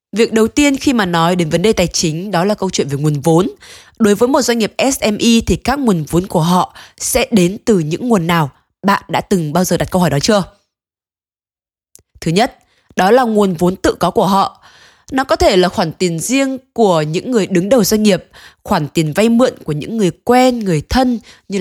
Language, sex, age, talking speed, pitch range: Vietnamese, female, 20-39, 225 wpm, 170-230 Hz